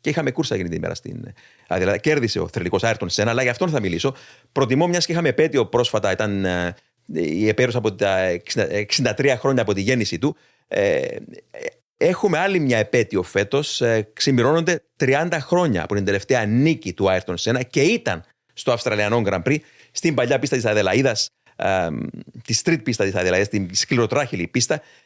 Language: Greek